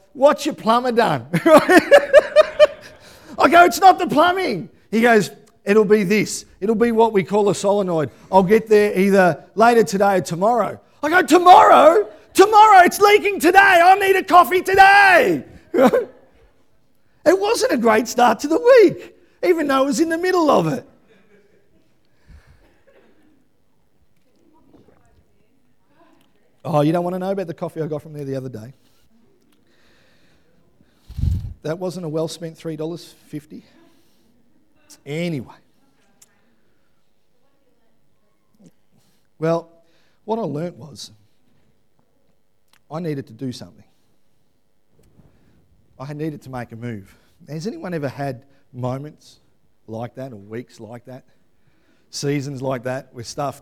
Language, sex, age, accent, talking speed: English, male, 40-59, Australian, 125 wpm